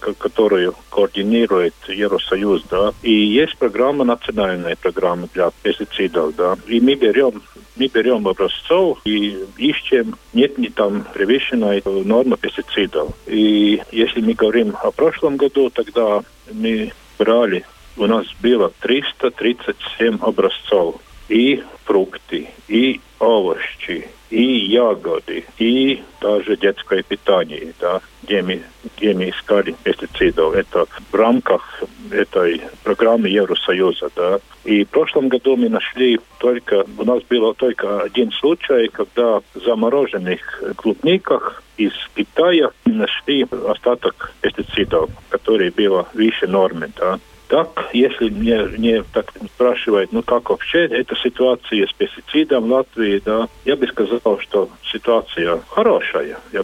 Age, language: 50-69, Russian